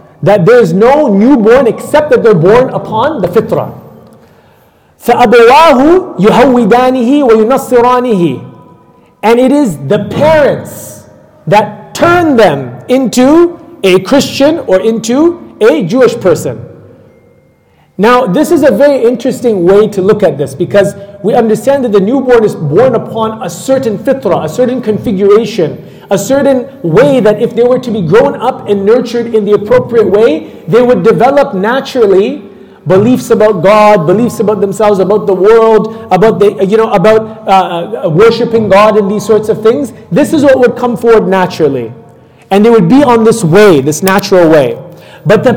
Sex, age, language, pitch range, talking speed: male, 40-59, English, 205-260 Hz, 155 wpm